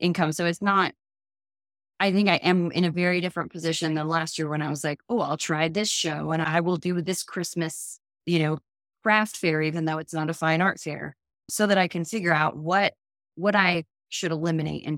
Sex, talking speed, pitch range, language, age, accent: female, 220 wpm, 150-175 Hz, English, 20-39, American